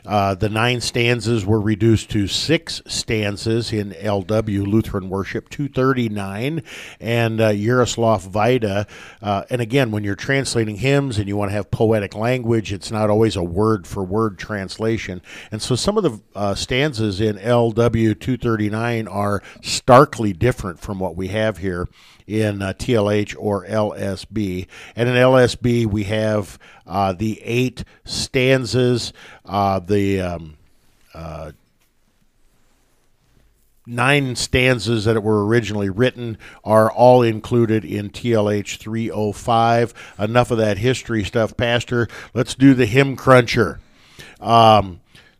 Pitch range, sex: 105-120 Hz, male